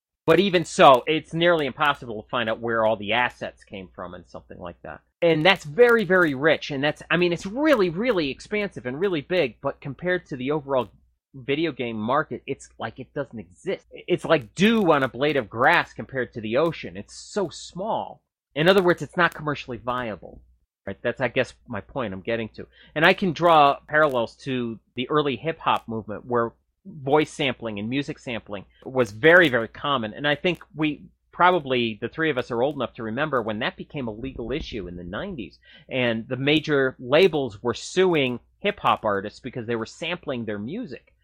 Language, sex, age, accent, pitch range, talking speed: English, male, 30-49, American, 115-165 Hz, 200 wpm